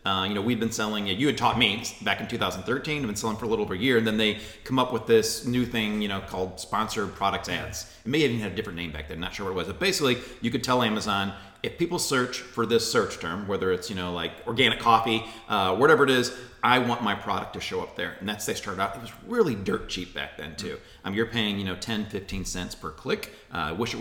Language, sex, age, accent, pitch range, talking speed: English, male, 40-59, American, 95-120 Hz, 280 wpm